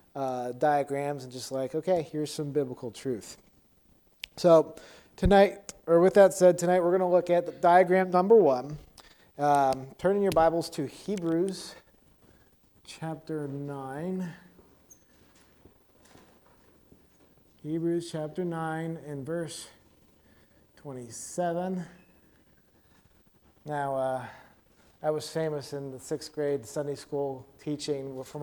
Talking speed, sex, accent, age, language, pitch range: 115 wpm, male, American, 30-49, English, 130-170 Hz